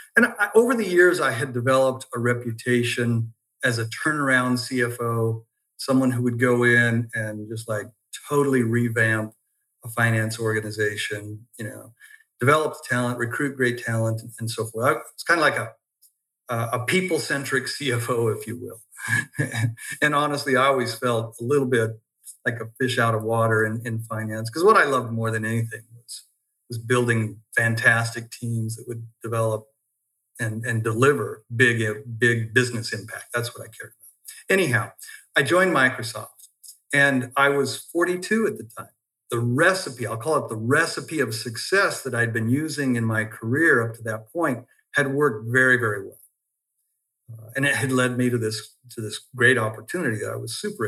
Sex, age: male, 50-69